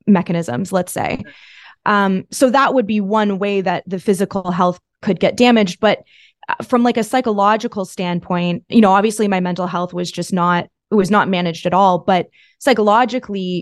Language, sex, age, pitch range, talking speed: English, female, 20-39, 185-210 Hz, 175 wpm